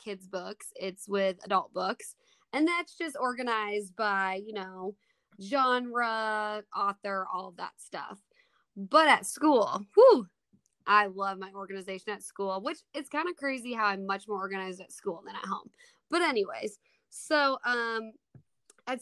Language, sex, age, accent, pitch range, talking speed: English, female, 20-39, American, 195-250 Hz, 155 wpm